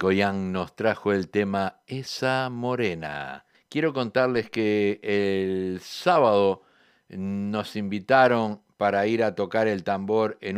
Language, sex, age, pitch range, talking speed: Spanish, male, 50-69, 100-120 Hz, 120 wpm